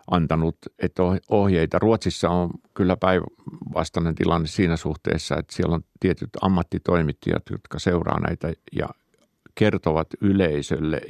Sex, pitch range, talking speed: male, 85-95 Hz, 110 wpm